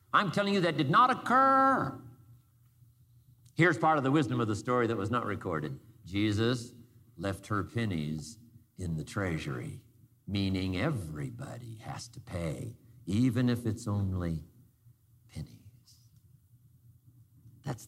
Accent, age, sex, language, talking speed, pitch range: American, 60-79, male, English, 125 wpm, 115-150 Hz